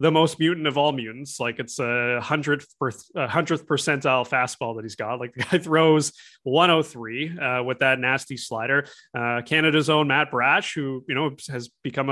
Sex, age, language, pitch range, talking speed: male, 20-39, English, 130-160 Hz, 190 wpm